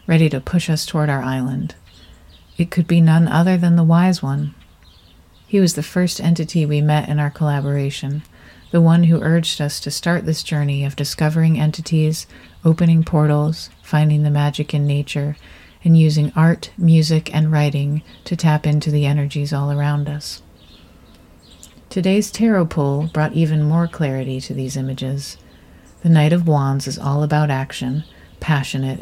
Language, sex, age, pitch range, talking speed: English, female, 40-59, 140-165 Hz, 160 wpm